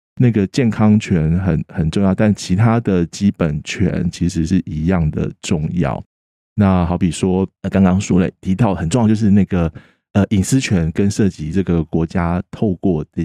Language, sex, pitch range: Chinese, male, 85-105 Hz